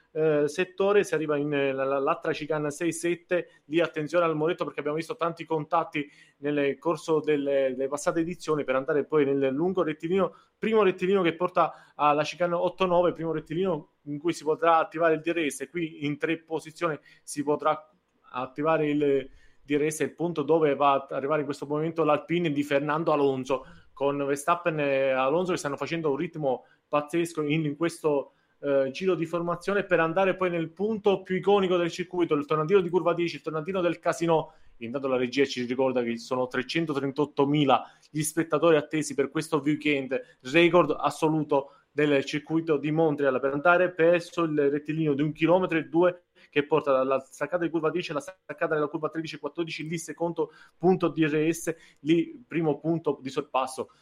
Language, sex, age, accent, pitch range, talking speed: Italian, male, 30-49, native, 145-170 Hz, 170 wpm